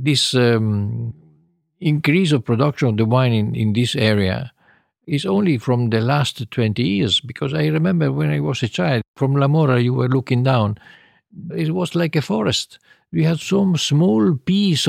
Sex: male